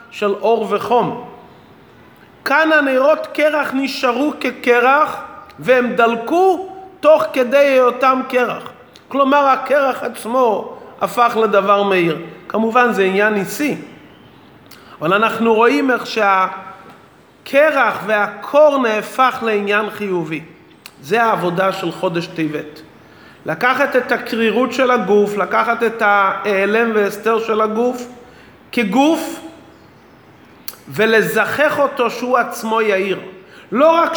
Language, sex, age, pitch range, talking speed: Hebrew, male, 40-59, 200-265 Hz, 100 wpm